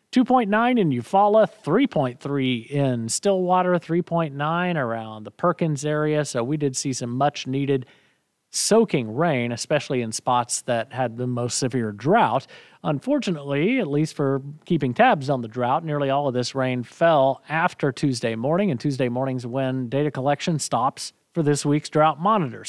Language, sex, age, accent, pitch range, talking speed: English, male, 40-59, American, 125-170 Hz, 155 wpm